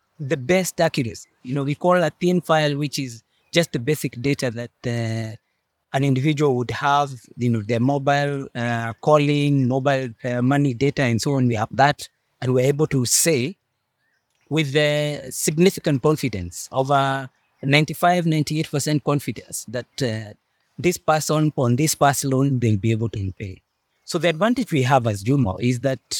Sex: male